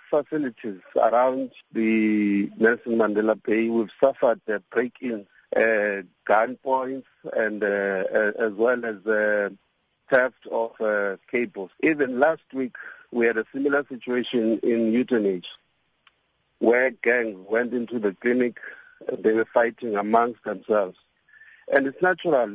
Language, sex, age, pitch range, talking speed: English, male, 50-69, 120-160 Hz, 125 wpm